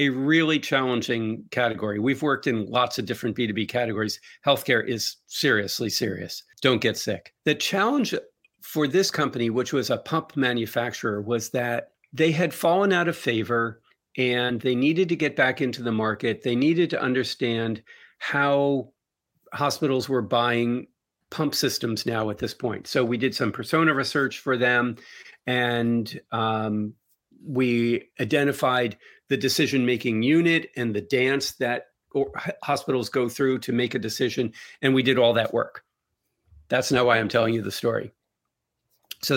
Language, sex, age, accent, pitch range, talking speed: English, male, 50-69, American, 115-140 Hz, 155 wpm